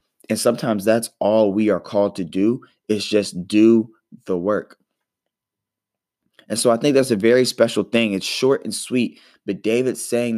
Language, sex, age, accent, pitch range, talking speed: English, male, 20-39, American, 95-110 Hz, 175 wpm